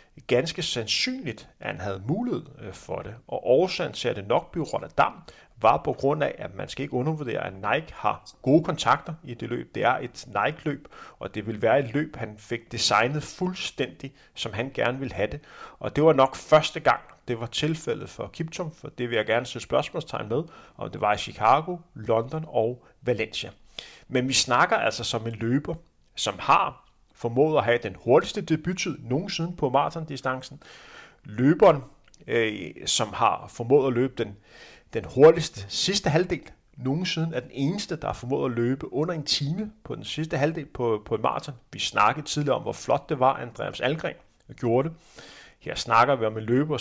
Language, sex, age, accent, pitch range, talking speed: Danish, male, 30-49, native, 115-155 Hz, 190 wpm